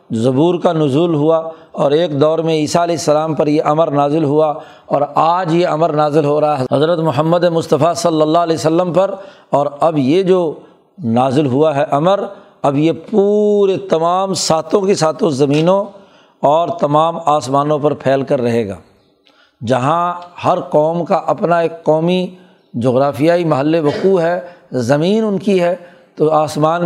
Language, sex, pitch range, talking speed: Urdu, male, 150-175 Hz, 165 wpm